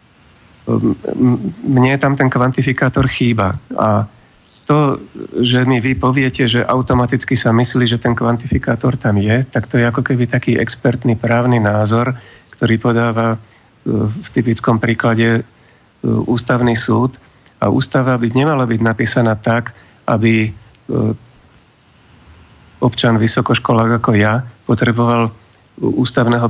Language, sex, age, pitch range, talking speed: Slovak, male, 50-69, 115-125 Hz, 115 wpm